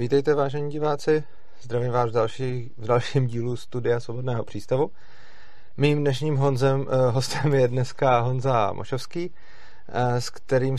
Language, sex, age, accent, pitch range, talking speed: Czech, male, 30-49, native, 110-130 Hz, 115 wpm